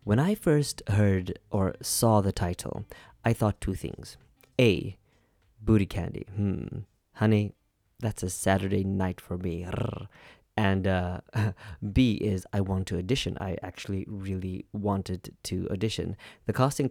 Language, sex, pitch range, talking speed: English, male, 95-110 Hz, 140 wpm